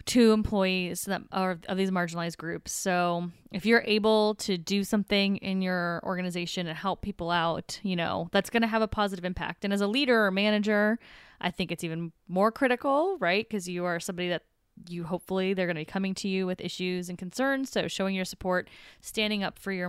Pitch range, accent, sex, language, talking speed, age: 175-210 Hz, American, female, English, 210 wpm, 20-39